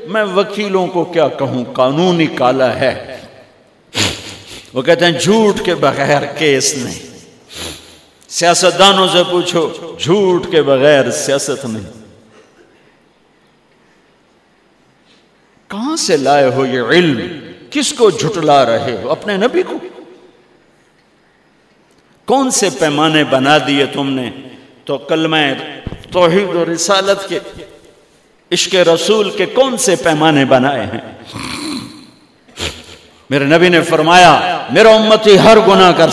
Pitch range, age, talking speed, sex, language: 150-215 Hz, 50-69, 115 wpm, male, Urdu